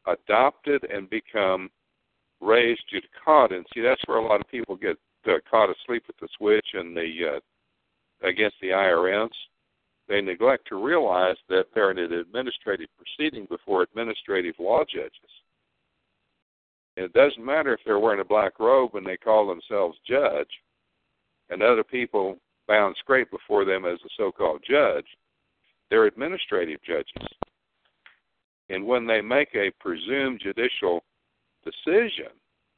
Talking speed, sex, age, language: 145 wpm, male, 60-79, English